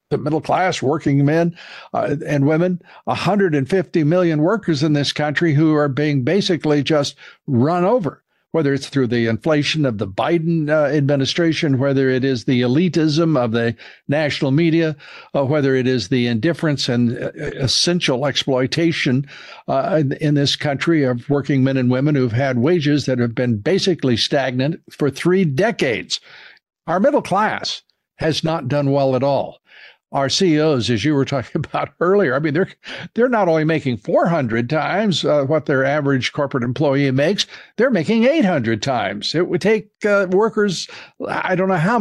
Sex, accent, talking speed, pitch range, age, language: male, American, 165 wpm, 130-165 Hz, 60-79, English